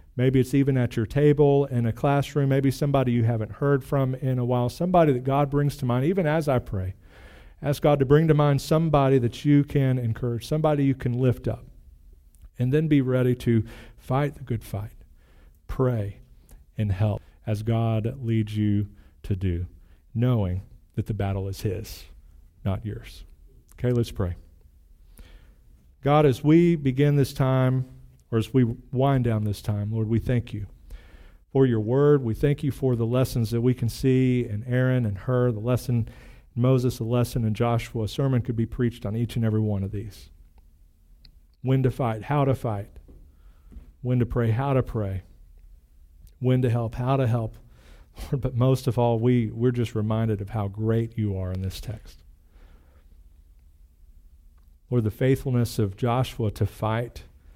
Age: 40-59